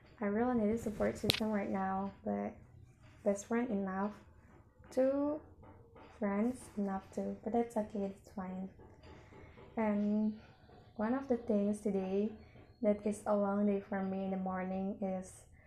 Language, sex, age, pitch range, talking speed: English, female, 10-29, 200-225 Hz, 145 wpm